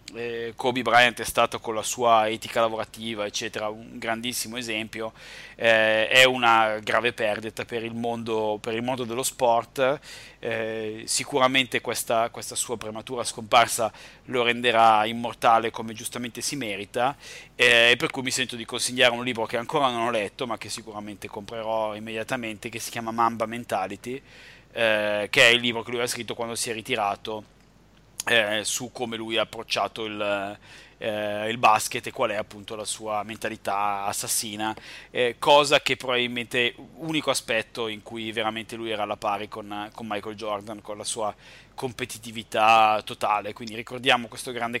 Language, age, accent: Italian, 30-49, native